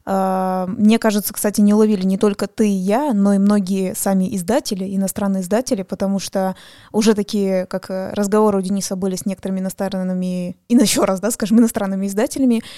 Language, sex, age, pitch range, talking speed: Russian, female, 20-39, 190-230 Hz, 170 wpm